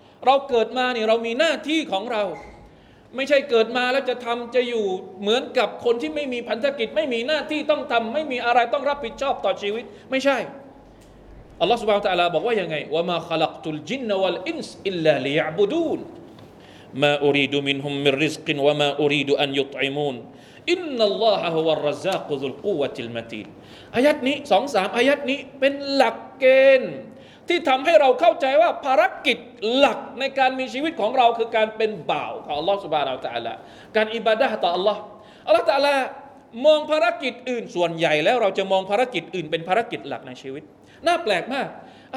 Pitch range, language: 190-275 Hz, Thai